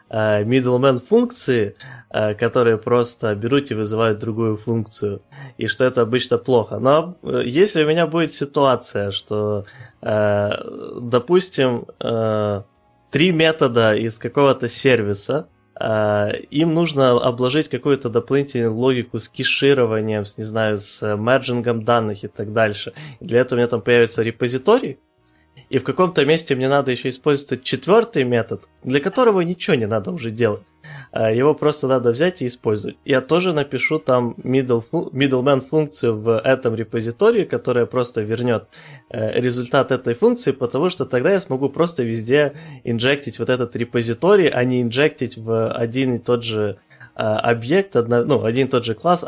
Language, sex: Ukrainian, male